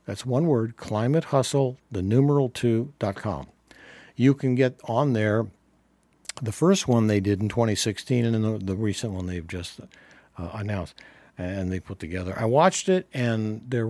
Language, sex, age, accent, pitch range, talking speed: English, male, 60-79, American, 105-145 Hz, 170 wpm